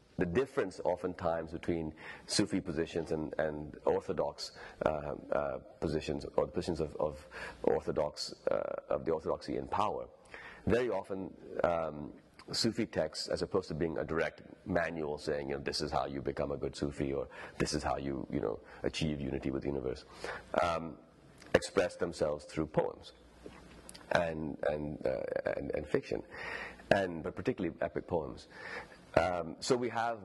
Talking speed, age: 155 wpm, 30-49